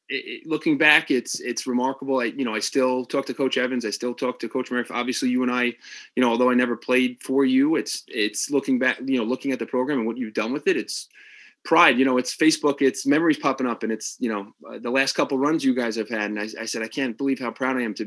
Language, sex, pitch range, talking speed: English, male, 115-140 Hz, 280 wpm